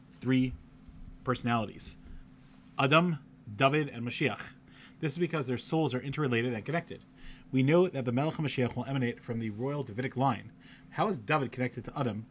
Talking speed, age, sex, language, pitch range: 165 wpm, 30-49, male, English, 115-145 Hz